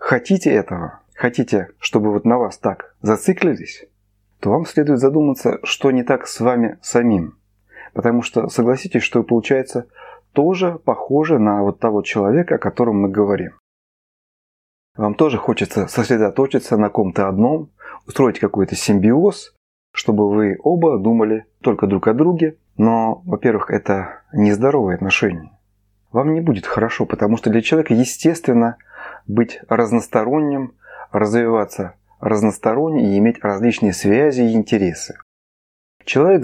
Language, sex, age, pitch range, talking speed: Russian, male, 30-49, 100-130 Hz, 130 wpm